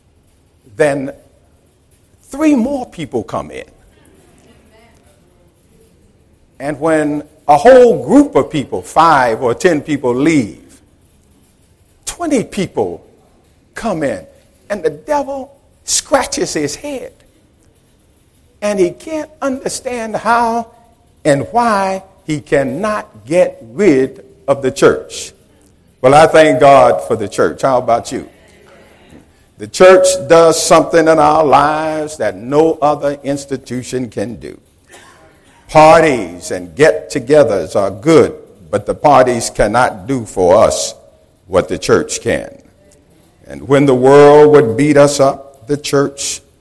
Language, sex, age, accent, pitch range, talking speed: English, male, 50-69, American, 130-195 Hz, 115 wpm